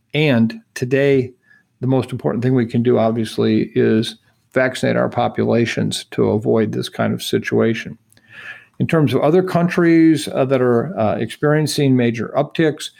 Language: English